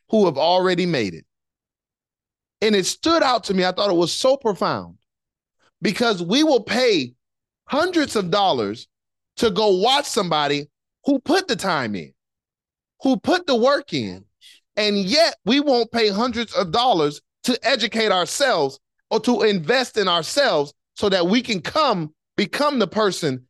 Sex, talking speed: male, 160 wpm